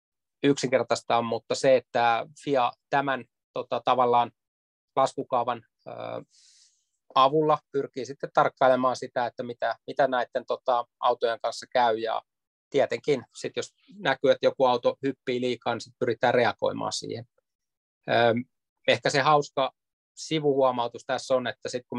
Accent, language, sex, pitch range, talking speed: native, Finnish, male, 115-135 Hz, 130 wpm